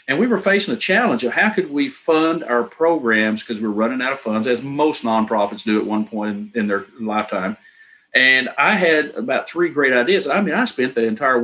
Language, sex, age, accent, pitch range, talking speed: English, male, 50-69, American, 105-150 Hz, 225 wpm